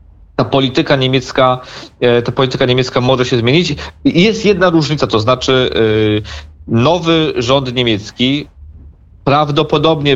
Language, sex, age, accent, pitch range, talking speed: Polish, male, 40-59, native, 120-150 Hz, 105 wpm